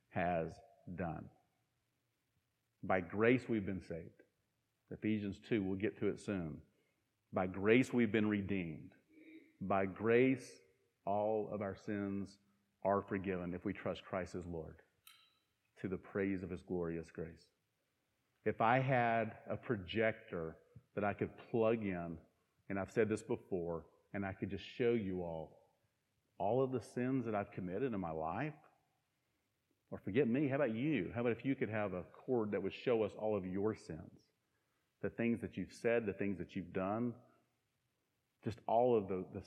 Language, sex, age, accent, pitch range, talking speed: English, male, 40-59, American, 95-115 Hz, 165 wpm